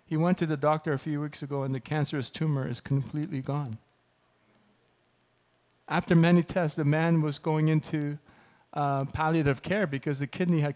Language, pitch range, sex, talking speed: English, 135-155 Hz, male, 175 wpm